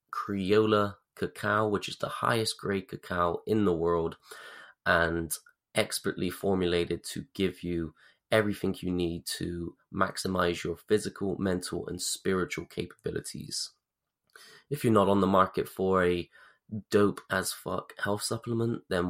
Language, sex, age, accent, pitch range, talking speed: English, male, 20-39, British, 90-110 Hz, 130 wpm